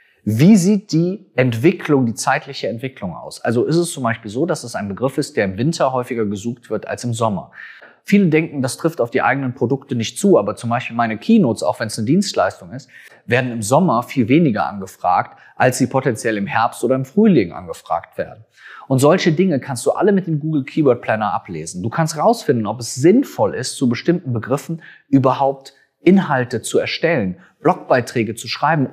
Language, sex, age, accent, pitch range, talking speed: German, male, 30-49, German, 120-165 Hz, 195 wpm